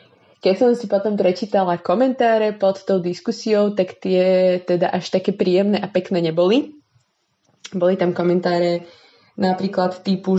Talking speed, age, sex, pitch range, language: 135 wpm, 20-39, female, 175-200 Hz, Slovak